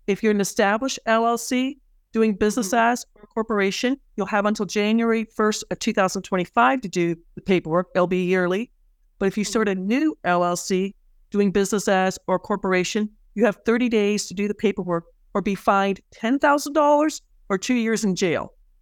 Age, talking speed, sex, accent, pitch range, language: 40-59, 170 wpm, female, American, 200-245 Hz, English